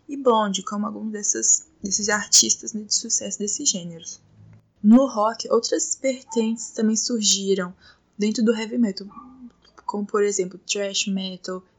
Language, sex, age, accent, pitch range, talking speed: Portuguese, female, 10-29, Brazilian, 195-235 Hz, 130 wpm